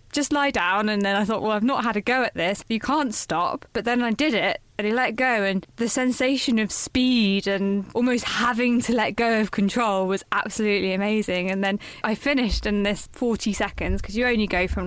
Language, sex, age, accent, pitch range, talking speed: English, female, 10-29, British, 190-225 Hz, 220 wpm